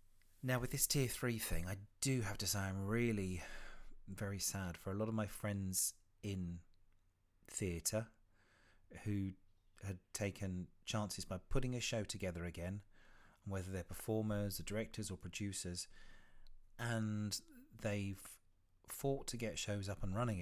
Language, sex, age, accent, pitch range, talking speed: English, male, 40-59, British, 90-110 Hz, 140 wpm